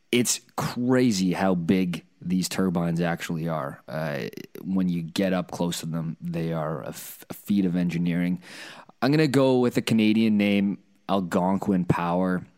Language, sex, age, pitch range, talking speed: English, male, 20-39, 85-105 Hz, 155 wpm